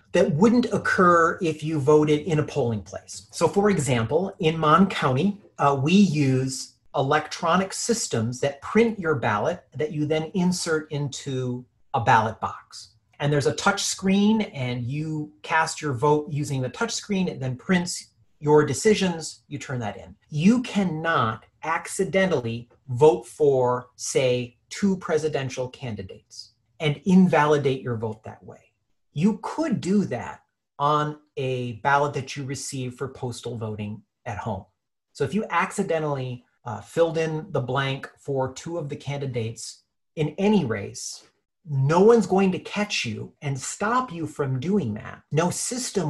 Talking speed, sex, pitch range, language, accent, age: 150 wpm, male, 125-170 Hz, English, American, 40-59